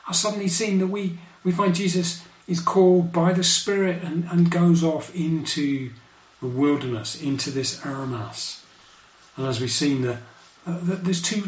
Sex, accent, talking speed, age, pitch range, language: male, British, 160 wpm, 40-59, 135-175 Hz, English